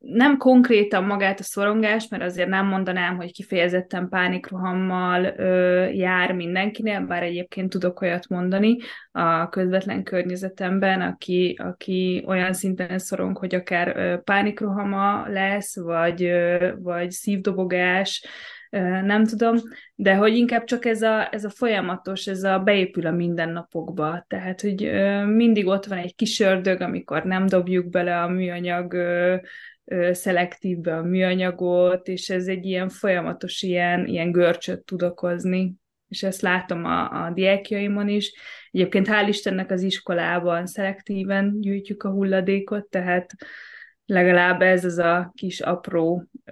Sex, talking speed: female, 135 wpm